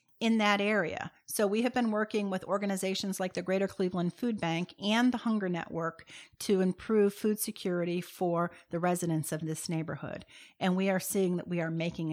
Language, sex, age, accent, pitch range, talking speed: English, female, 50-69, American, 175-205 Hz, 190 wpm